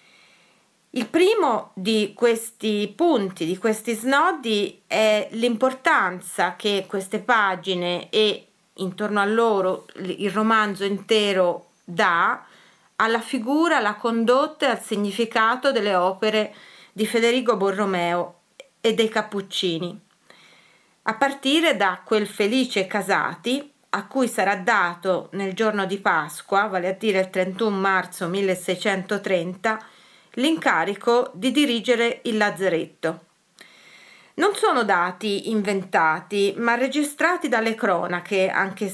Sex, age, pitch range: female, 30-49, 190-230 Hz